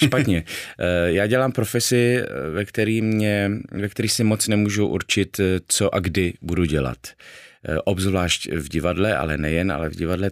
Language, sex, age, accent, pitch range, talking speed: Czech, male, 30-49, native, 85-110 Hz, 140 wpm